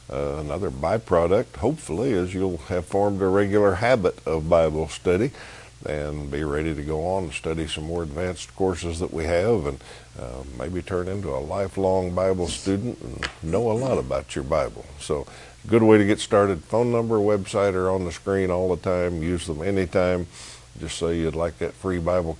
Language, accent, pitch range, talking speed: English, American, 80-100 Hz, 190 wpm